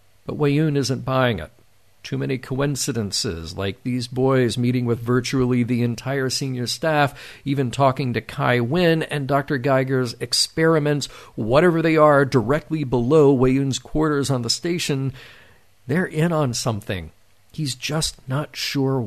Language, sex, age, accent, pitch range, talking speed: English, male, 50-69, American, 105-145 Hz, 140 wpm